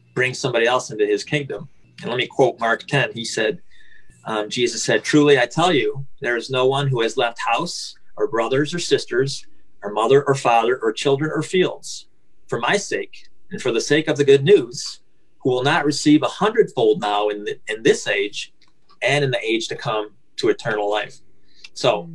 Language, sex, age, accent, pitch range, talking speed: English, male, 30-49, American, 125-200 Hz, 200 wpm